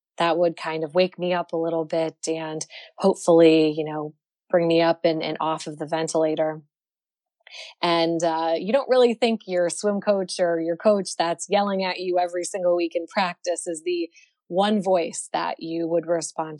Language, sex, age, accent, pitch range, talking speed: English, female, 20-39, American, 165-205 Hz, 190 wpm